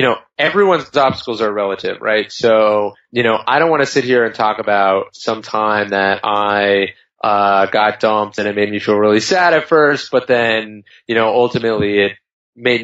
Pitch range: 110-140 Hz